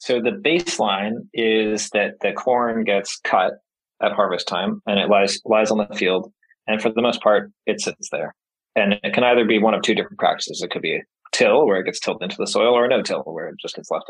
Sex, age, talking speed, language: male, 20-39, 245 wpm, English